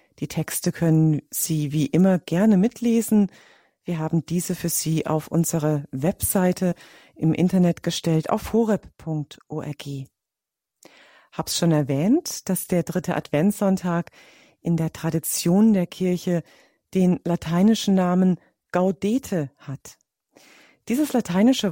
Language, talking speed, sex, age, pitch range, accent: German, 110 wpm, female, 40-59, 160-200 Hz, German